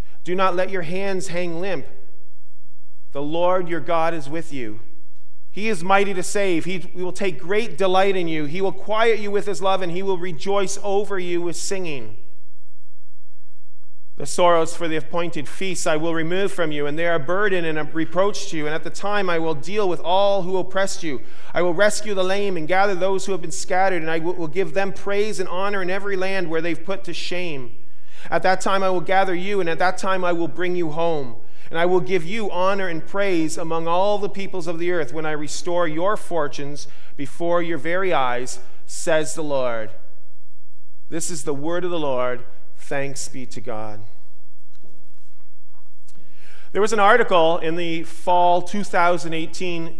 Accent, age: American, 30-49